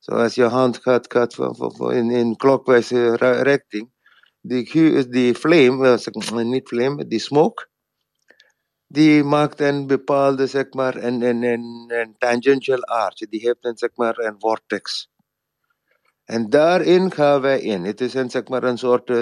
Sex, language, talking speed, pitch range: male, English, 140 wpm, 115-135 Hz